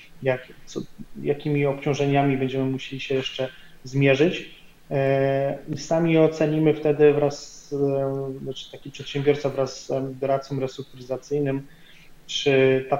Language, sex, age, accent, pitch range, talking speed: Polish, male, 30-49, native, 130-145 Hz, 110 wpm